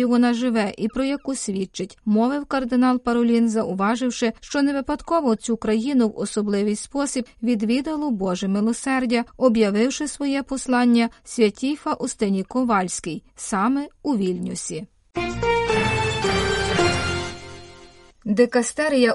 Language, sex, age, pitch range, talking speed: Ukrainian, female, 30-49, 215-260 Hz, 95 wpm